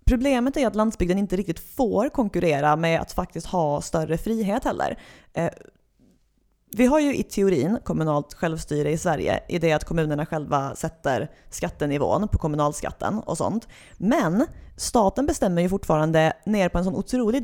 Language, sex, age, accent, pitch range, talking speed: English, female, 30-49, Swedish, 165-210 Hz, 155 wpm